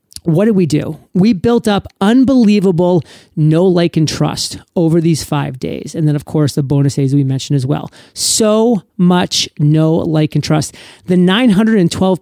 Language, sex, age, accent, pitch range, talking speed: English, male, 40-59, American, 160-205 Hz, 170 wpm